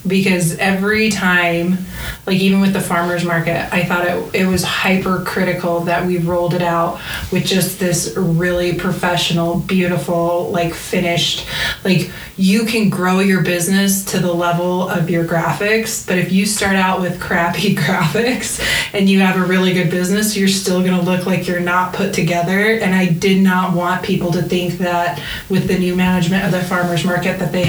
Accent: American